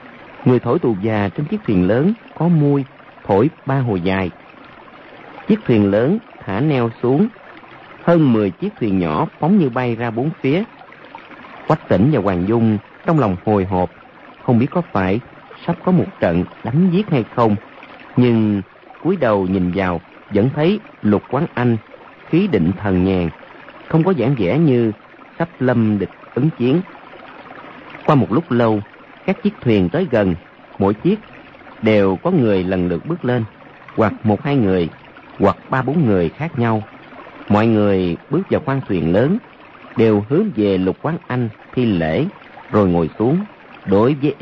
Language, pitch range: Vietnamese, 100-160 Hz